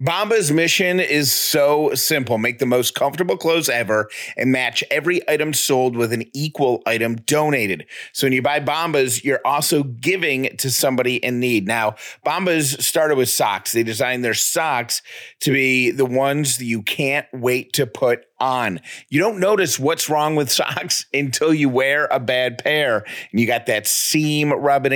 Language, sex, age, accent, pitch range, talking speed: English, male, 30-49, American, 120-145 Hz, 175 wpm